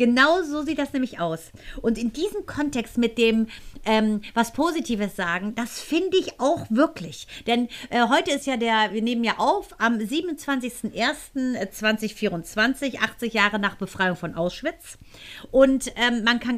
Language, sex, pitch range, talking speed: German, female, 210-255 Hz, 155 wpm